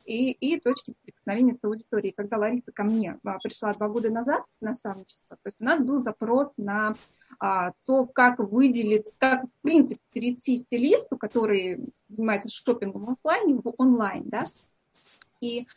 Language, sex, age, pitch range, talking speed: Russian, female, 20-39, 215-260 Hz, 150 wpm